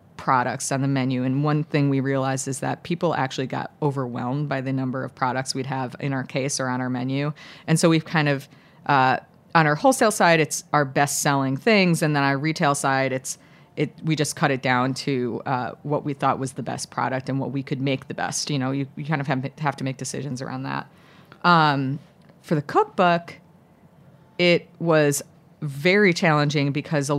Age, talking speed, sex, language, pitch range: 30-49, 210 wpm, female, English, 135-160 Hz